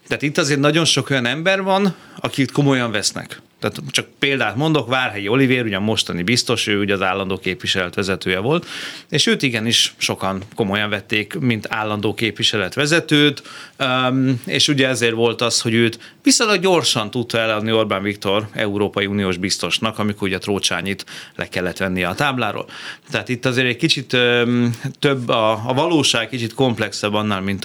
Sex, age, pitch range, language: male, 30-49, 105-135 Hz, Hungarian